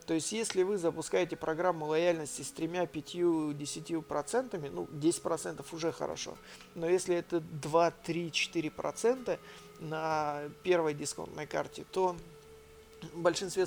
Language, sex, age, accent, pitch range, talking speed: Russian, male, 40-59, native, 155-190 Hz, 135 wpm